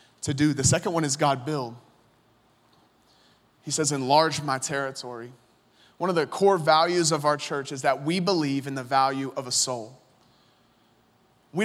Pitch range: 145-200 Hz